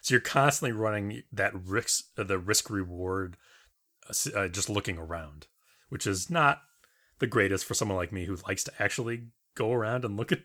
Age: 30-49